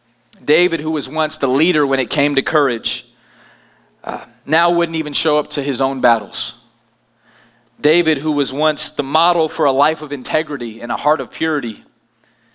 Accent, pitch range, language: American, 120-165 Hz, English